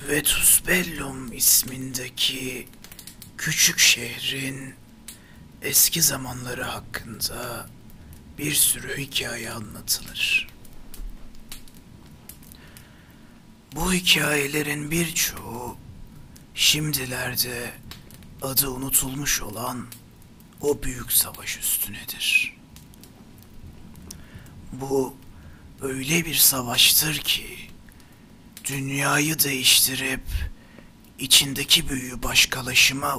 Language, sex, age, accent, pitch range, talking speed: Turkish, male, 60-79, native, 120-140 Hz, 60 wpm